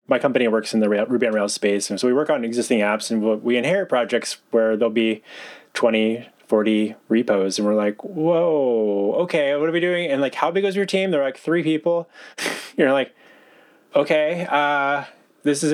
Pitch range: 110-135 Hz